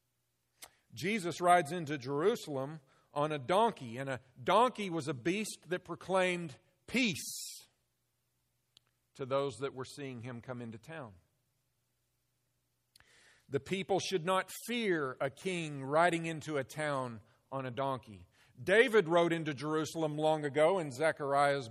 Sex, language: male, English